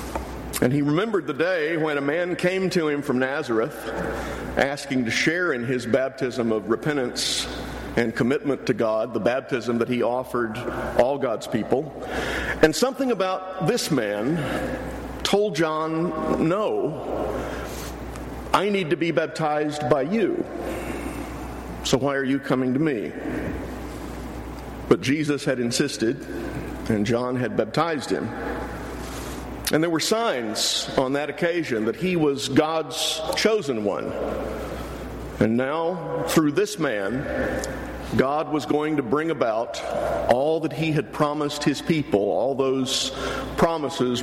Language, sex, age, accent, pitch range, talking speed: English, male, 50-69, American, 120-155 Hz, 135 wpm